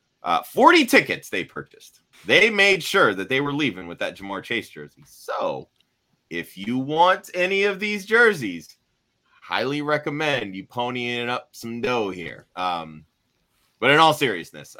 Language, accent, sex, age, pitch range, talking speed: English, American, male, 30-49, 75-115 Hz, 155 wpm